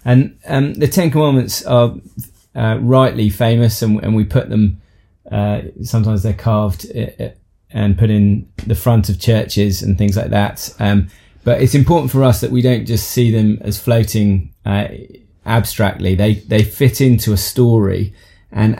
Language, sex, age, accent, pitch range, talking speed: English, male, 20-39, British, 95-115 Hz, 165 wpm